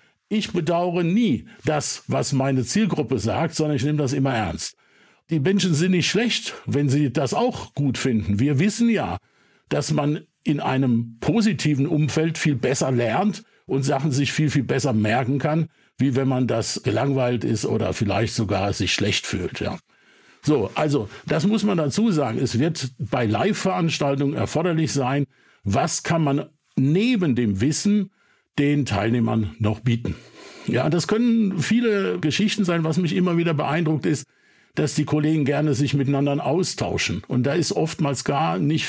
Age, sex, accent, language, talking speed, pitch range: 60-79, male, German, German, 165 wpm, 130-165 Hz